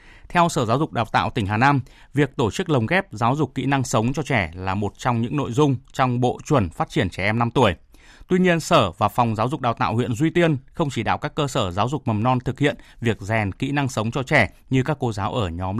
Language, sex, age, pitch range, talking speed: Vietnamese, male, 20-39, 110-140 Hz, 275 wpm